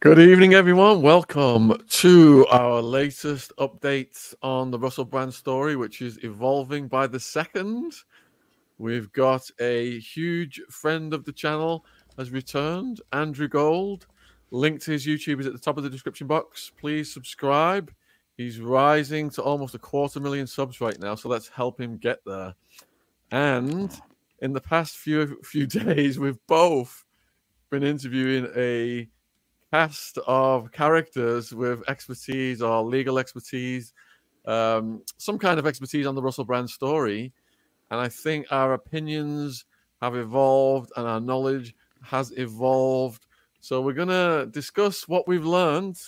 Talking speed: 145 wpm